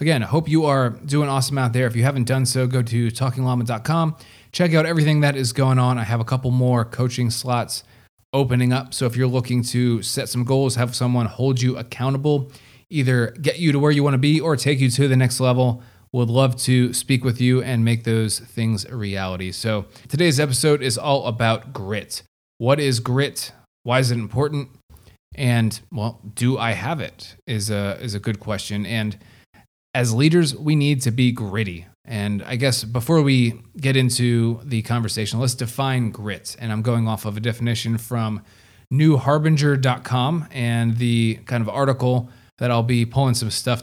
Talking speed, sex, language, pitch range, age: 190 wpm, male, English, 115-135 Hz, 20-39